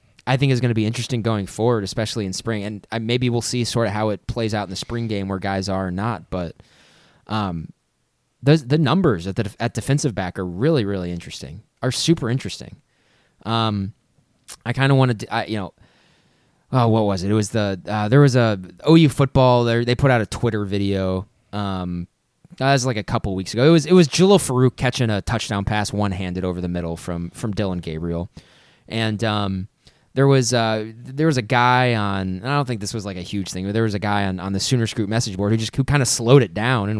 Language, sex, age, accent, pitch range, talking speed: English, male, 20-39, American, 105-130 Hz, 240 wpm